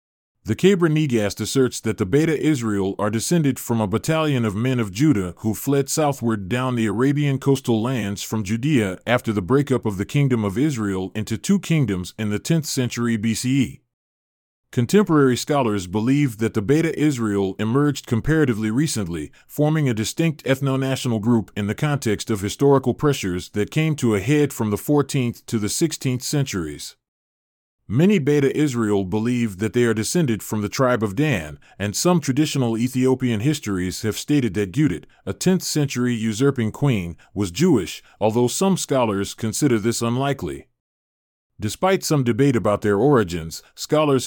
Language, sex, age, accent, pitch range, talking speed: English, male, 30-49, American, 105-140 Hz, 160 wpm